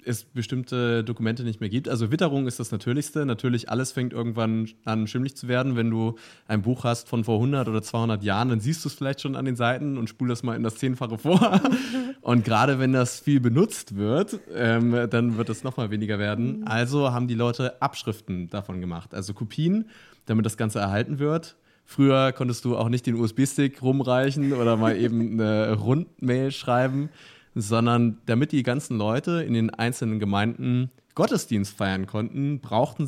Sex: male